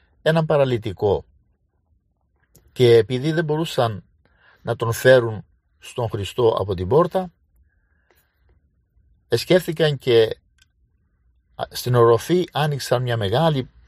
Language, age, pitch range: Greek, 50-69, 95-150 Hz